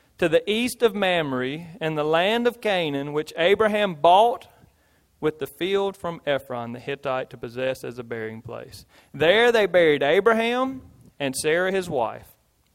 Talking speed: 160 wpm